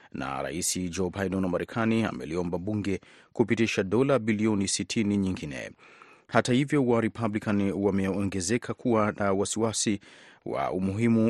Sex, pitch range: male, 95-115 Hz